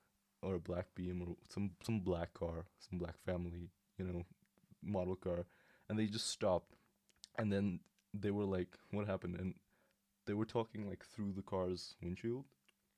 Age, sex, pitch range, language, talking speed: 20-39, male, 90-105 Hz, English, 165 wpm